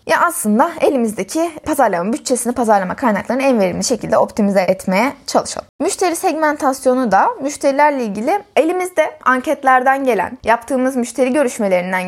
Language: Turkish